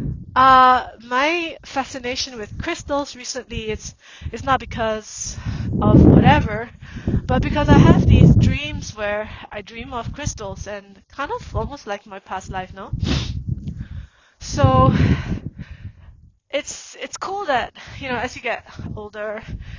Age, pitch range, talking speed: 20-39, 205-250 Hz, 130 wpm